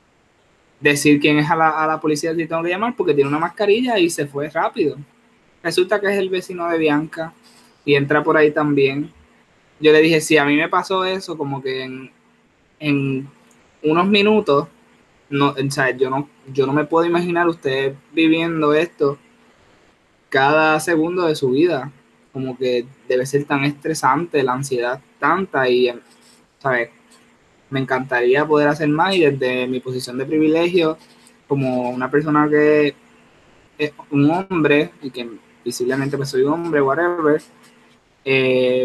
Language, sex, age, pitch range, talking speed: Spanish, male, 20-39, 130-155 Hz, 160 wpm